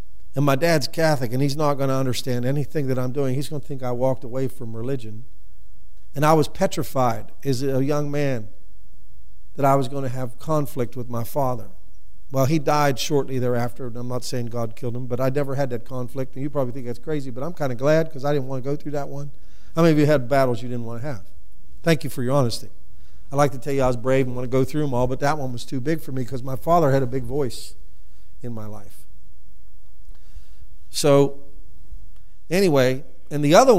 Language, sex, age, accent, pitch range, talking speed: English, male, 50-69, American, 95-140 Hz, 235 wpm